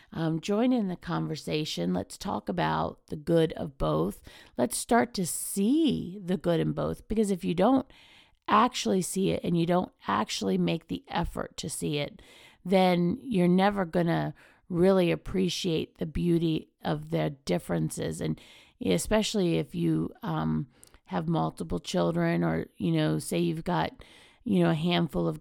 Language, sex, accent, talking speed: English, female, American, 160 wpm